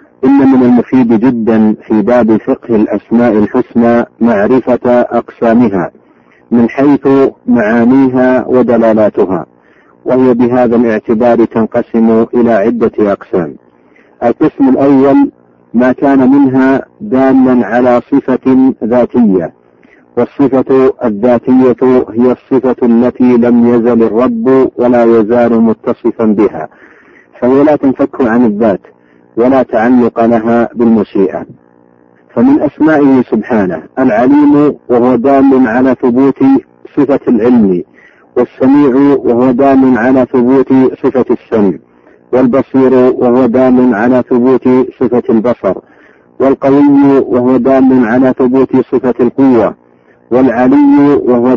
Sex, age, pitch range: male, 50-69, 120-130 Hz